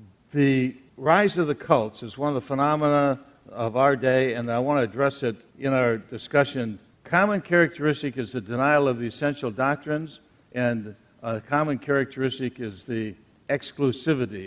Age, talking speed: 60-79, 160 wpm